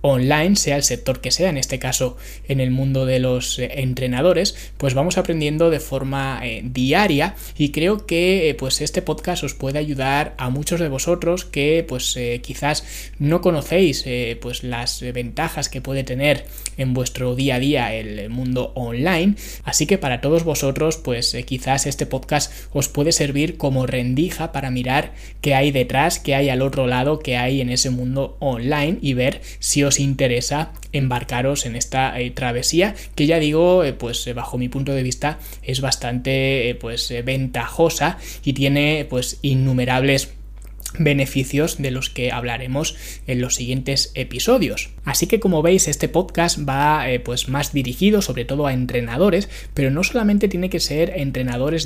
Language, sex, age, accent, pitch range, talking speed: Spanish, male, 20-39, Spanish, 125-155 Hz, 170 wpm